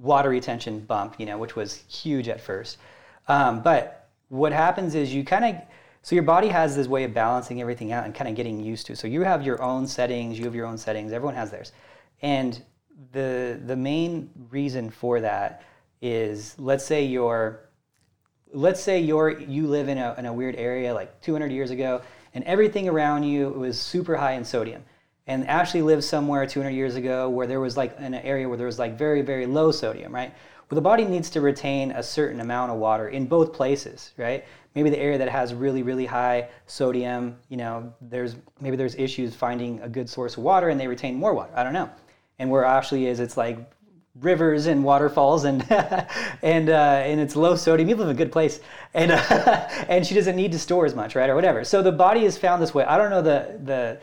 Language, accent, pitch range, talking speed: English, American, 125-155 Hz, 220 wpm